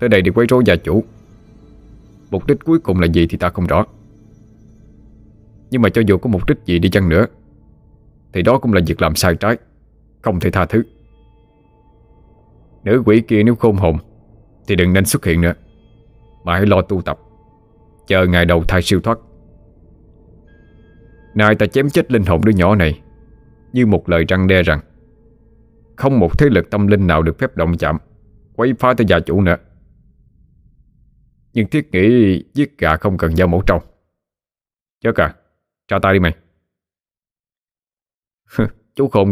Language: Vietnamese